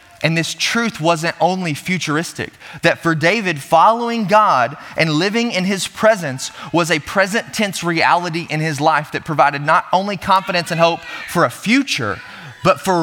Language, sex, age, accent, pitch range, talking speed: English, male, 20-39, American, 165-210 Hz, 165 wpm